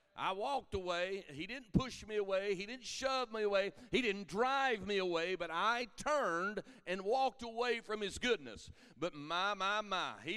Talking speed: 185 wpm